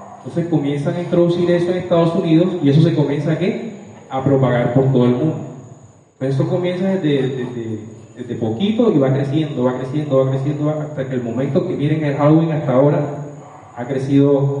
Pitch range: 135-175 Hz